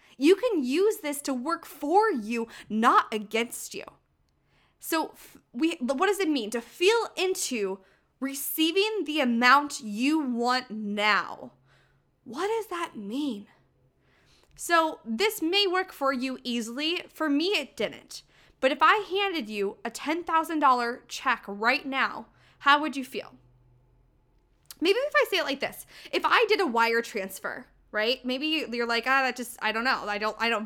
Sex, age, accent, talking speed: female, 20-39, American, 160 wpm